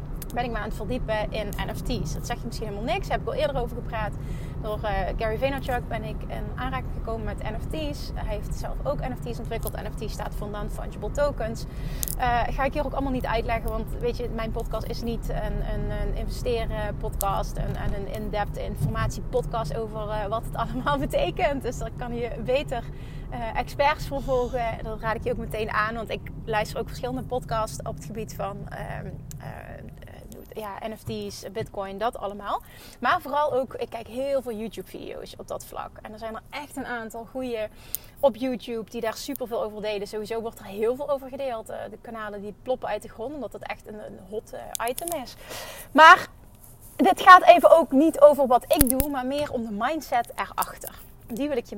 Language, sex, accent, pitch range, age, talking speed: Dutch, female, Dutch, 220-290 Hz, 30-49, 200 wpm